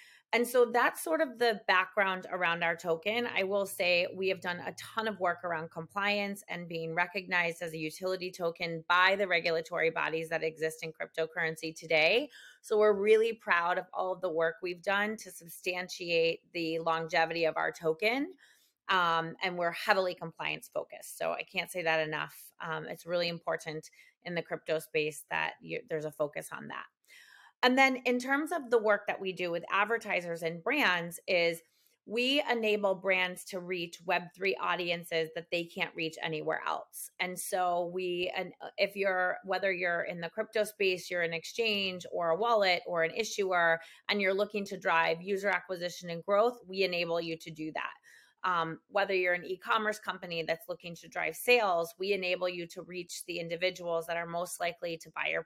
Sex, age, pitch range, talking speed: female, 30-49, 165-200 Hz, 185 wpm